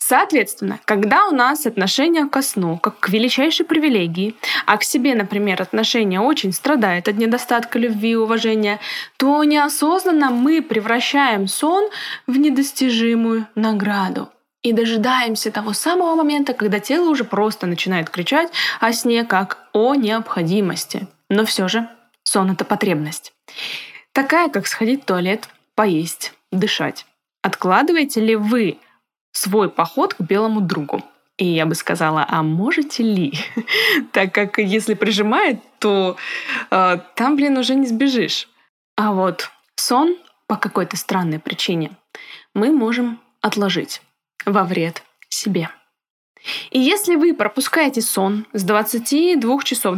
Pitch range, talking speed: 200-275 Hz, 130 wpm